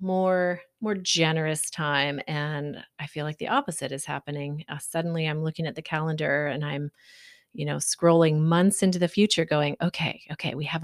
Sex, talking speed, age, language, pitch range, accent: female, 185 wpm, 30-49, English, 155-190 Hz, American